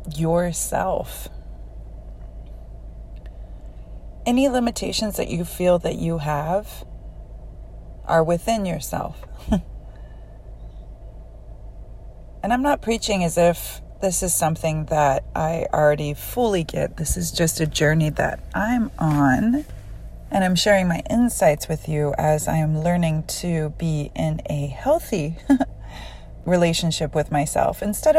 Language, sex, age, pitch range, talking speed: English, female, 30-49, 145-195 Hz, 115 wpm